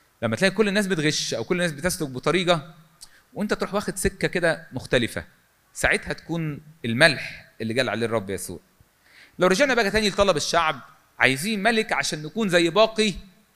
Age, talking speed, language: 40-59, 160 wpm, Arabic